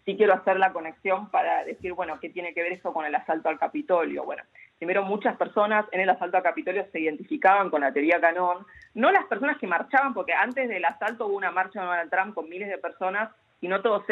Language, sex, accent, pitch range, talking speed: Spanish, female, Argentinian, 175-240 Hz, 235 wpm